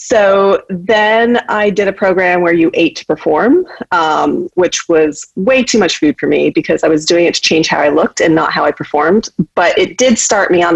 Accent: American